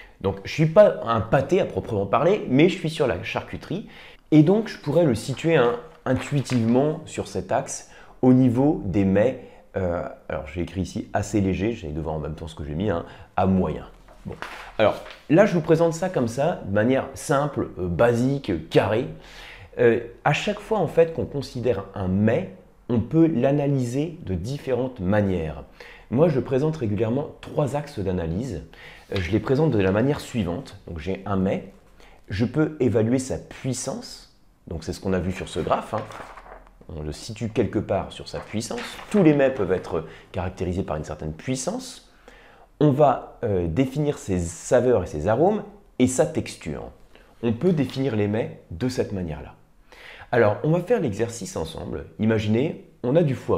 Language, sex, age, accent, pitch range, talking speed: French, male, 30-49, French, 95-145 Hz, 180 wpm